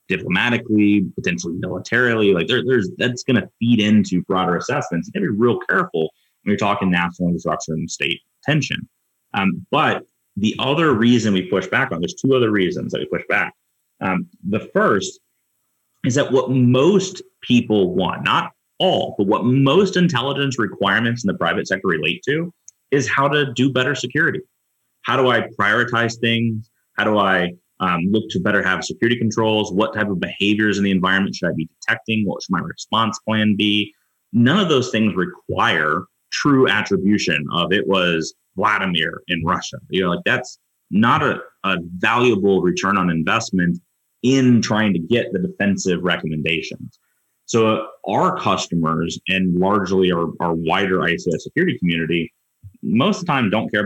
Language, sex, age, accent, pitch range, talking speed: English, male, 30-49, American, 90-120 Hz, 170 wpm